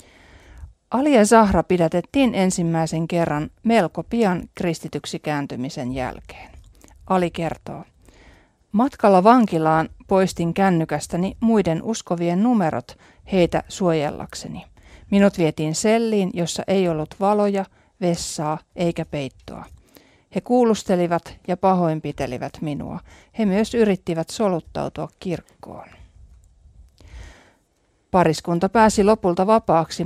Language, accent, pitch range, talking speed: Finnish, native, 155-195 Hz, 90 wpm